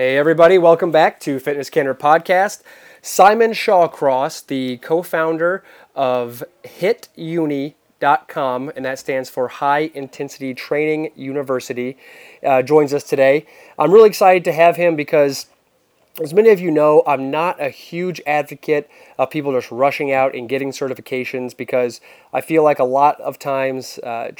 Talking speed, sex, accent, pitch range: 150 wpm, male, American, 130-155 Hz